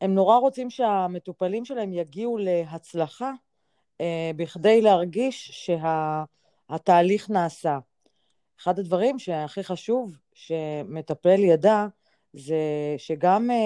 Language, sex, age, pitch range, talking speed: Hebrew, female, 30-49, 160-210 Hz, 90 wpm